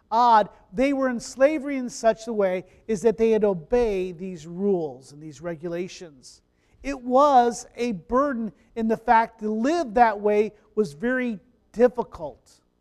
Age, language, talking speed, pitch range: 40-59, English, 155 wpm, 185-245 Hz